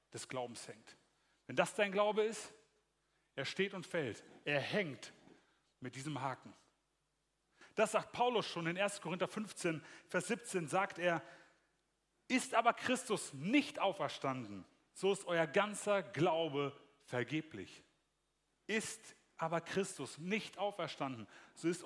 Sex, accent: male, German